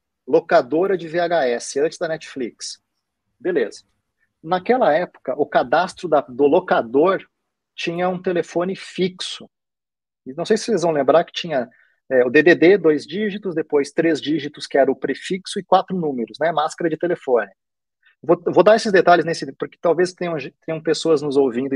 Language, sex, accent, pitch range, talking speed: Portuguese, male, Brazilian, 145-185 Hz, 155 wpm